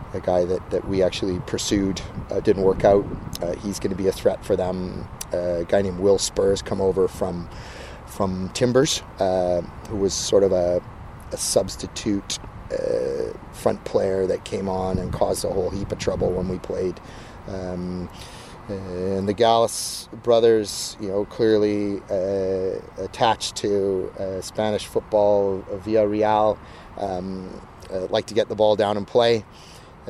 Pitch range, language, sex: 95-110 Hz, English, male